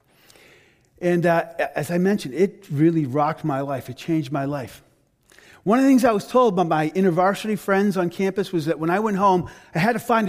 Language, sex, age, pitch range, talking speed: English, male, 40-59, 170-220 Hz, 215 wpm